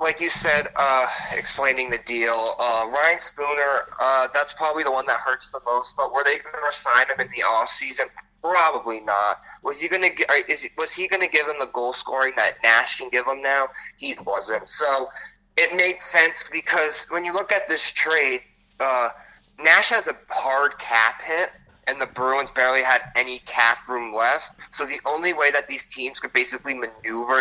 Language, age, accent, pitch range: English, 20-39, American, 125-160 Hz